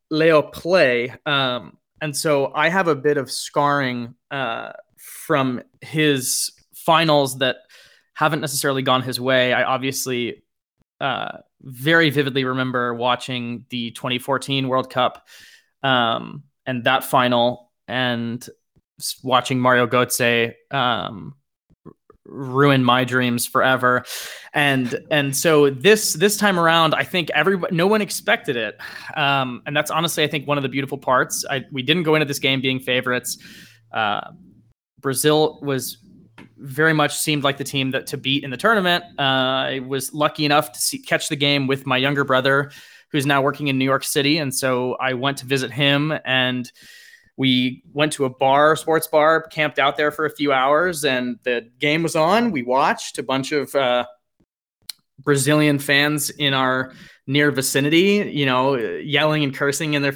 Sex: male